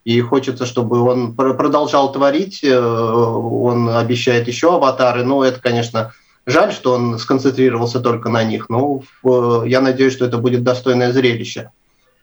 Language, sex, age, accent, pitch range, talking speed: Russian, male, 30-49, native, 120-135 Hz, 135 wpm